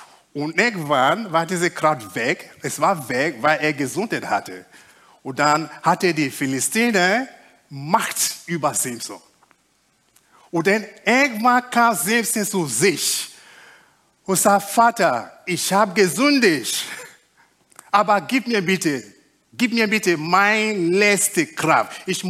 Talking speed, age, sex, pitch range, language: 120 wpm, 50-69, male, 170-220 Hz, German